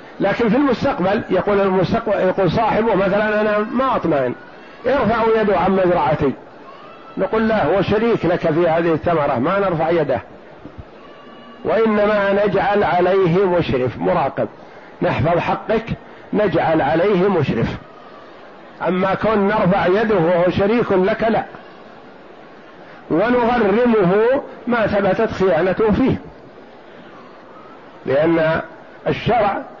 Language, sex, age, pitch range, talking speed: Arabic, male, 50-69, 175-220 Hz, 100 wpm